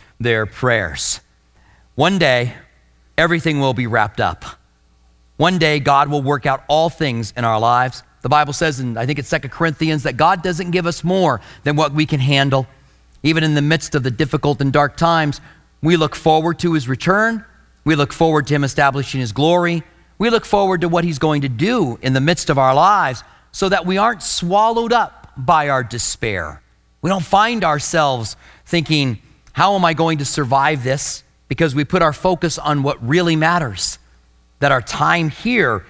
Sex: male